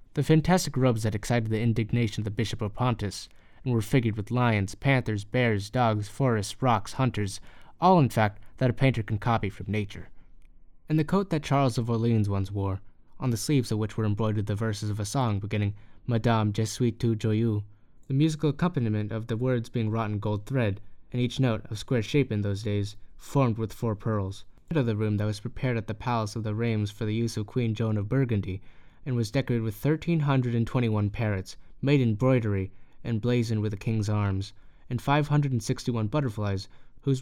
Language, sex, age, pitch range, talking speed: English, male, 20-39, 105-125 Hz, 210 wpm